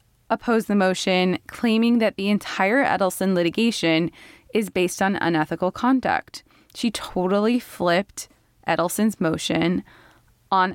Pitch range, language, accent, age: 165-215 Hz, English, American, 20-39